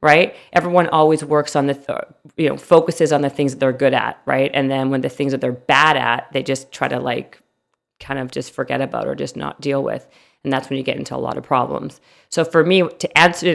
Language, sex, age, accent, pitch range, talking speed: English, female, 40-59, American, 140-165 Hz, 250 wpm